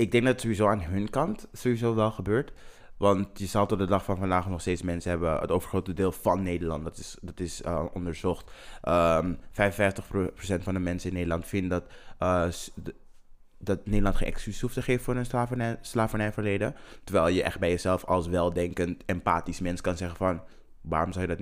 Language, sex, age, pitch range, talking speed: Dutch, male, 20-39, 90-110 Hz, 190 wpm